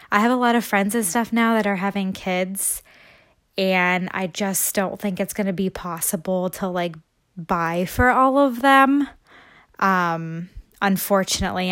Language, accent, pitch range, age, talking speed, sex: English, American, 175-200 Hz, 20-39, 165 wpm, female